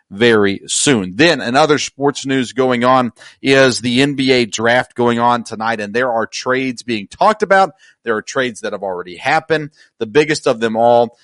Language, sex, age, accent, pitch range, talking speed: English, male, 40-59, American, 115-135 Hz, 180 wpm